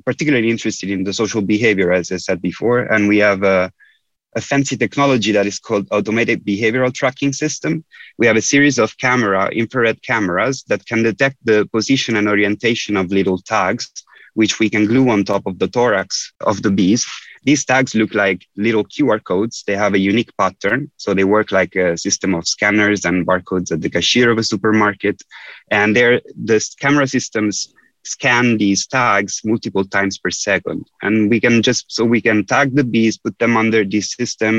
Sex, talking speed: male, 190 wpm